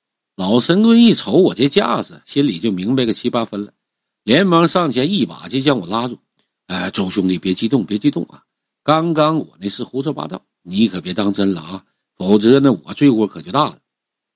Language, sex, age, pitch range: Chinese, male, 50-69, 115-170 Hz